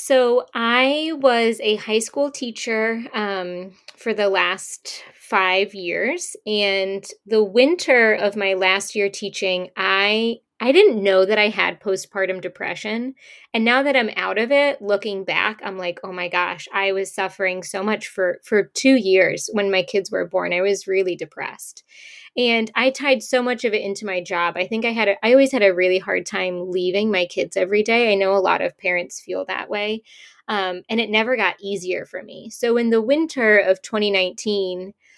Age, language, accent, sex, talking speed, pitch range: 20-39, English, American, female, 190 wpm, 190-235 Hz